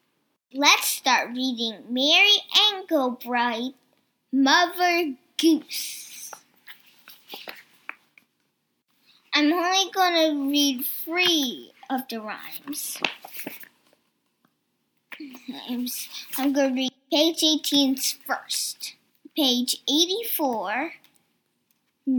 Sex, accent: male, American